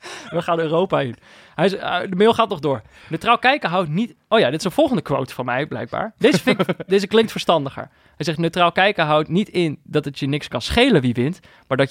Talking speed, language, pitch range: 220 wpm, Dutch, 125-175 Hz